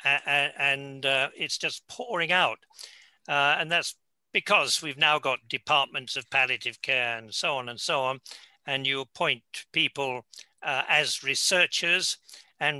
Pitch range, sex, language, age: 130-165 Hz, male, English, 60-79